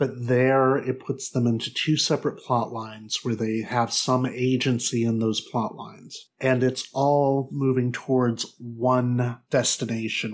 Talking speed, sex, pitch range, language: 150 wpm, male, 115-140 Hz, English